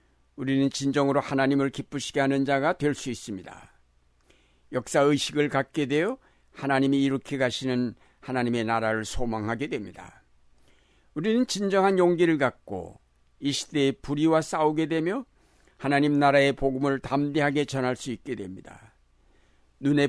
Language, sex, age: Korean, male, 60-79